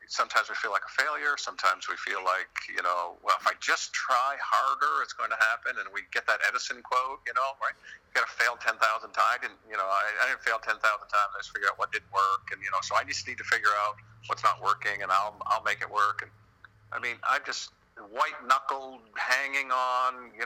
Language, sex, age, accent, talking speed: English, male, 50-69, American, 240 wpm